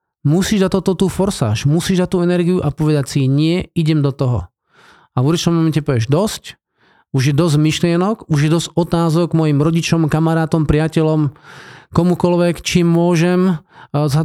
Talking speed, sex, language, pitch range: 165 wpm, male, Slovak, 140-185 Hz